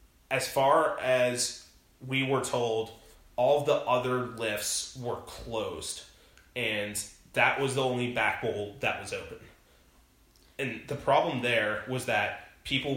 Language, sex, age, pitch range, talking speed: English, male, 20-39, 115-130 Hz, 140 wpm